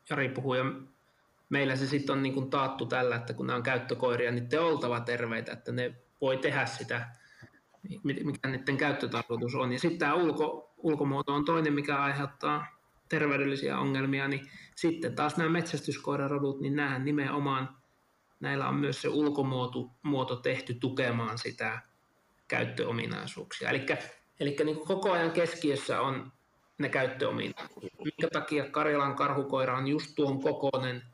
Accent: native